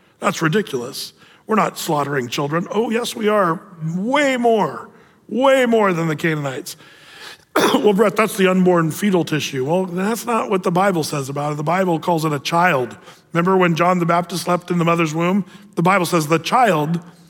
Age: 40-59